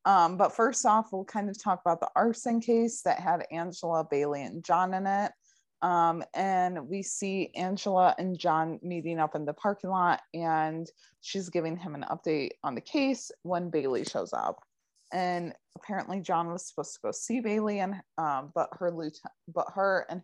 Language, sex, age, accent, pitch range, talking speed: English, female, 20-39, American, 160-195 Hz, 185 wpm